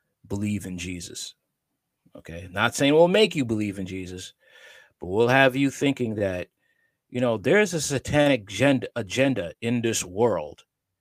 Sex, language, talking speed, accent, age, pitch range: male, English, 155 wpm, American, 30-49, 100-130 Hz